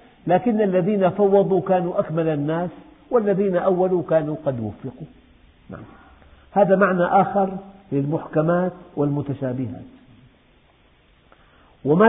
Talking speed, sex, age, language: 85 wpm, male, 50-69, Arabic